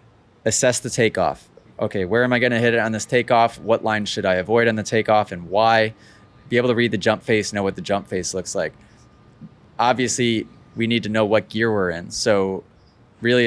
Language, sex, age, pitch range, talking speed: English, male, 20-39, 100-120 Hz, 220 wpm